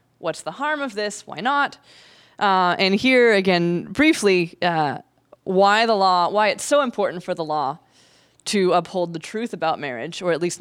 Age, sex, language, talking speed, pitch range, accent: 20-39, female, English, 180 wpm, 165-215 Hz, American